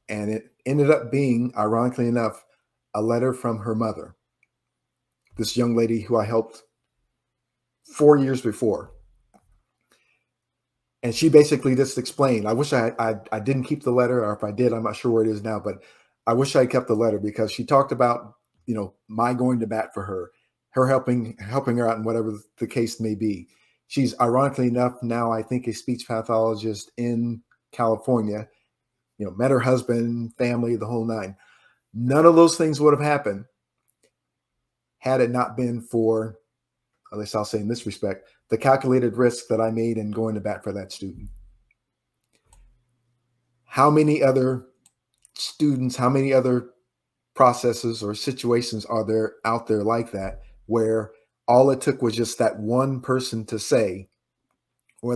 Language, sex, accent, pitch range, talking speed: English, male, American, 110-125 Hz, 170 wpm